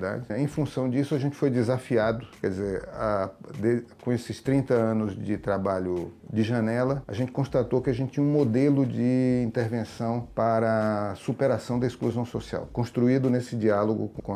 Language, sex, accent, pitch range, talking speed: Portuguese, male, Brazilian, 105-125 Hz, 165 wpm